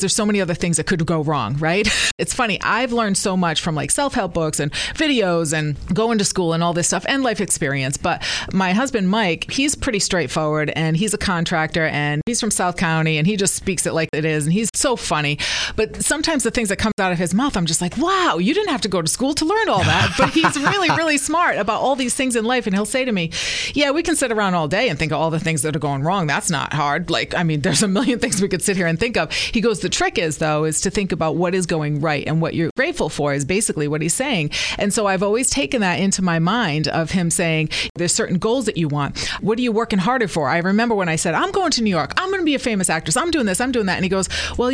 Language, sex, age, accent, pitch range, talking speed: English, female, 30-49, American, 165-235 Hz, 280 wpm